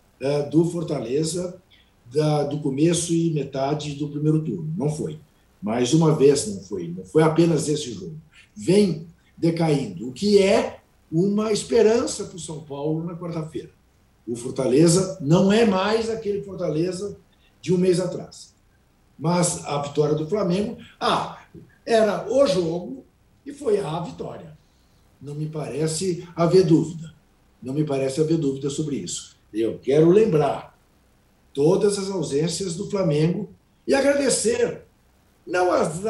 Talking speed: 140 wpm